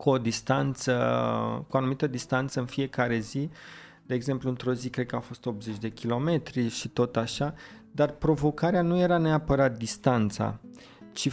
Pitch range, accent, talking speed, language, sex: 120-140 Hz, native, 165 wpm, Romanian, male